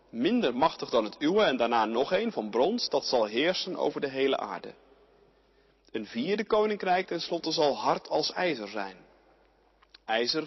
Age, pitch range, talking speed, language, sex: 40-59, 120-195 Hz, 160 wpm, Dutch, male